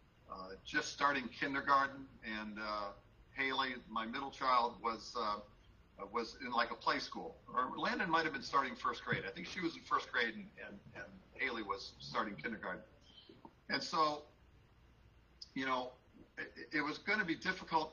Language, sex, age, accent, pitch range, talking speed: English, male, 50-69, American, 115-155 Hz, 170 wpm